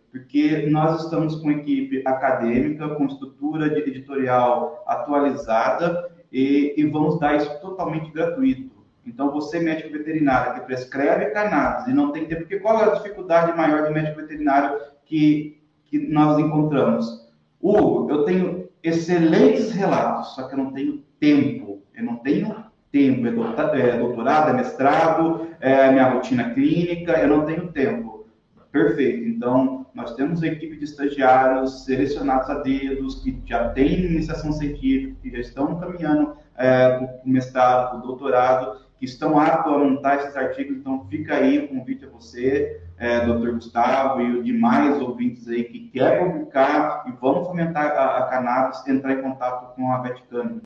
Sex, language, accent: male, Portuguese, Brazilian